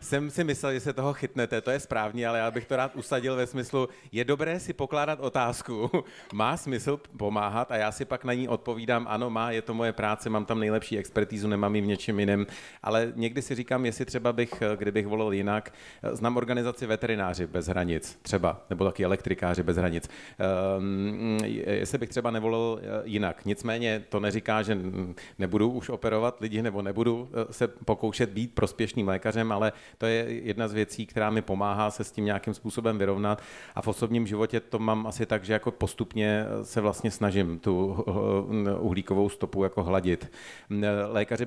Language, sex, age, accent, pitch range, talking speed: Czech, male, 40-59, native, 100-115 Hz, 180 wpm